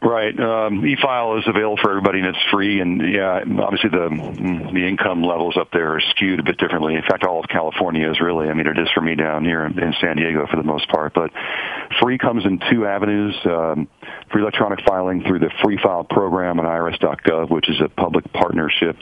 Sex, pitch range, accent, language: male, 75-90 Hz, American, English